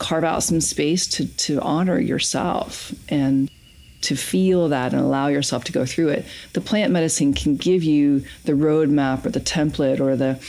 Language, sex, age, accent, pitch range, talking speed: English, female, 40-59, American, 135-160 Hz, 185 wpm